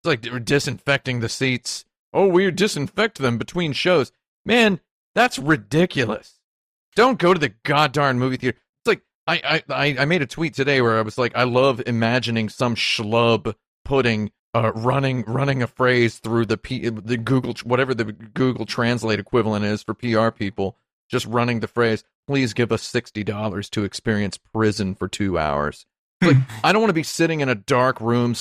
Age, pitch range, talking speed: 40-59, 110-130 Hz, 180 wpm